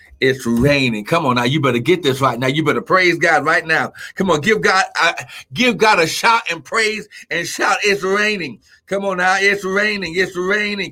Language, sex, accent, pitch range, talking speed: English, male, American, 125-195 Hz, 215 wpm